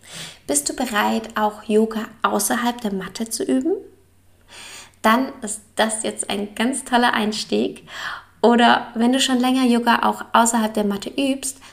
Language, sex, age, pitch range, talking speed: German, female, 20-39, 200-235 Hz, 150 wpm